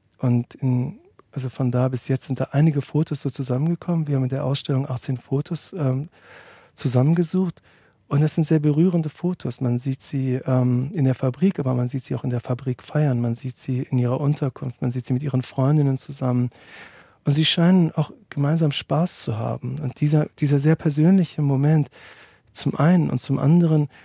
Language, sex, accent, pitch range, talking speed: German, male, German, 130-150 Hz, 190 wpm